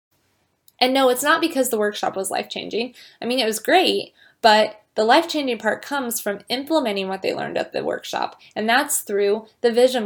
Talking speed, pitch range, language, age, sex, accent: 190 wpm, 205-275 Hz, English, 20-39, female, American